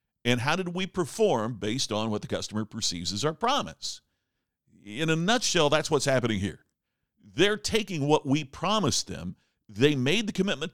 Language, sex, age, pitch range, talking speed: English, male, 50-69, 115-175 Hz, 175 wpm